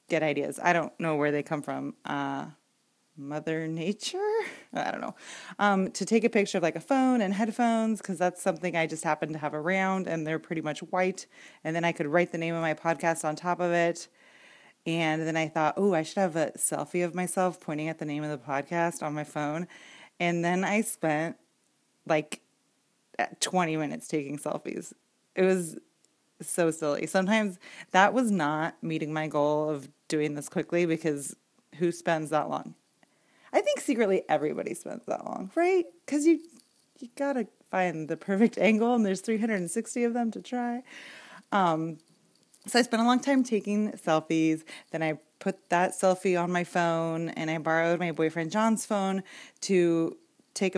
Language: English